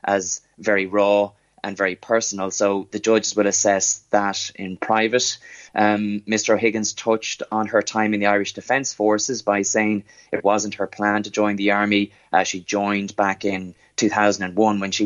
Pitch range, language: 100-105 Hz, English